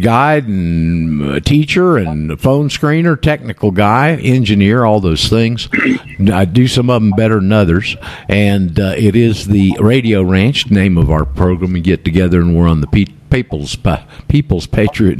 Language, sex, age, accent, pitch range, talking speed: English, male, 50-69, American, 85-115 Hz, 175 wpm